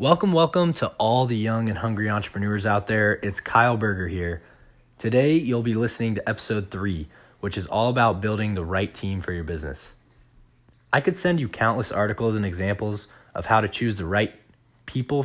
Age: 20-39